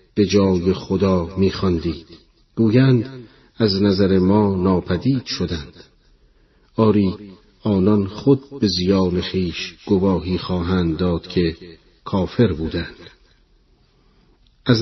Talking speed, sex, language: 95 wpm, male, Persian